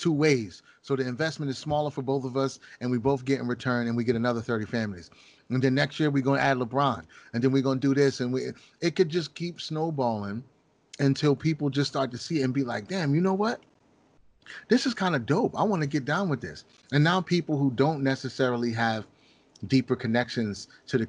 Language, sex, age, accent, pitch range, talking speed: English, male, 30-49, American, 115-145 Hz, 235 wpm